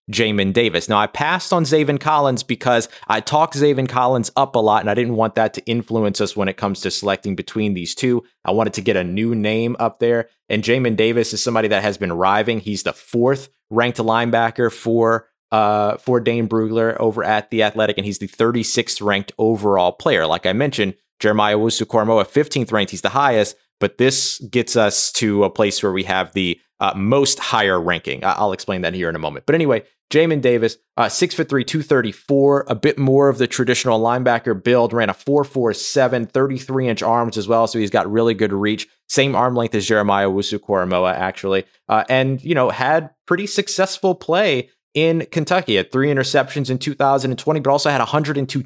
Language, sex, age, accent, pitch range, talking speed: English, male, 30-49, American, 105-130 Hz, 200 wpm